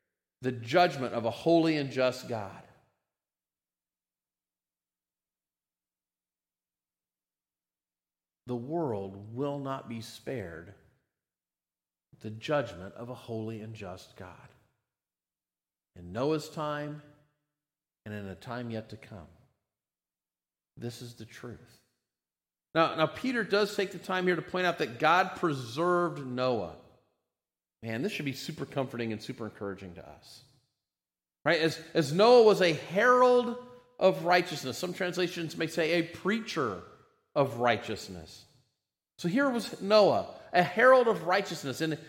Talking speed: 125 wpm